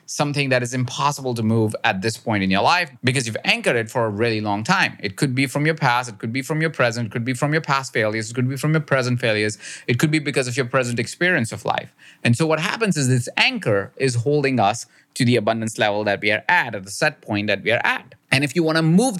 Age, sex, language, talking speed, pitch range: 30-49, male, English, 280 wpm, 115-150 Hz